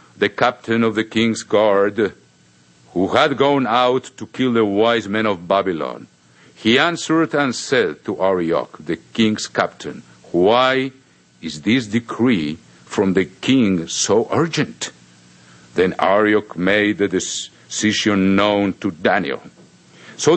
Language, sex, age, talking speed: English, male, 50-69, 130 wpm